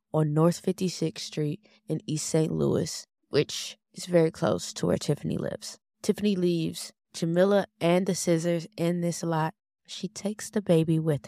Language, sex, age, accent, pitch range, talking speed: English, female, 20-39, American, 160-195 Hz, 160 wpm